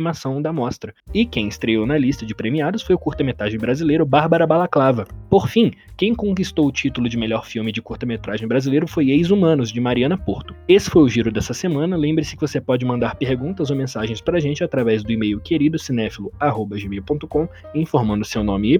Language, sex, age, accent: Portuguese, male, 20-39, Brazilian